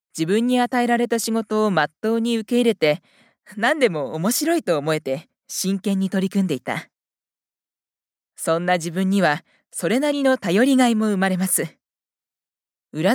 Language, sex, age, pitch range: Japanese, female, 20-39, 165-240 Hz